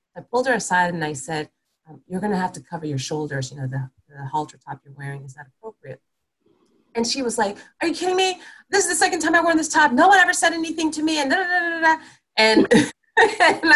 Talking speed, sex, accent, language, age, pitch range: 255 wpm, female, American, English, 30-49, 180-285 Hz